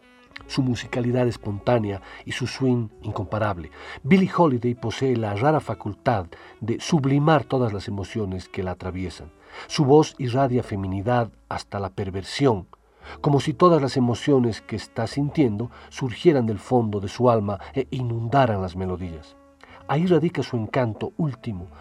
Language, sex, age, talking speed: Spanish, male, 50-69, 140 wpm